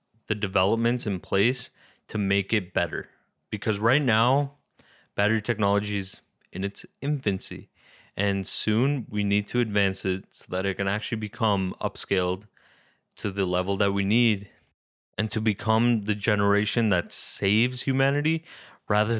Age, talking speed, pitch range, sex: 20-39, 145 wpm, 95-115 Hz, male